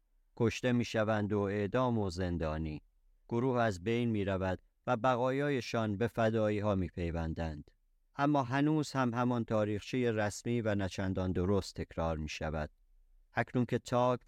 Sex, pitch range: male, 95-120 Hz